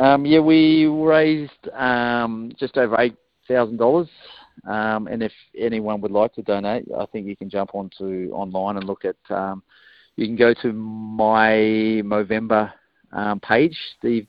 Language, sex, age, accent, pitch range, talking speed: English, male, 40-59, Australian, 100-115 Hz, 150 wpm